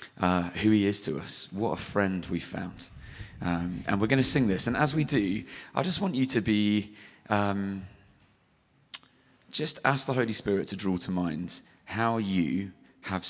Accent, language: British, English